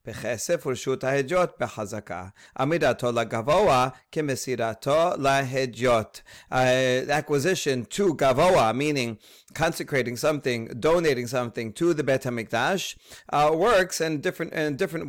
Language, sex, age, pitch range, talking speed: English, male, 40-59, 125-155 Hz, 75 wpm